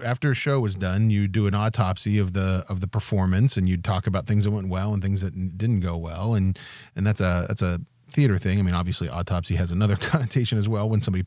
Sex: male